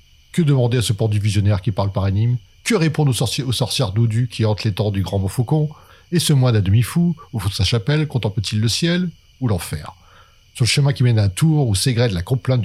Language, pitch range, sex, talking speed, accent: French, 100-125 Hz, male, 245 wpm, French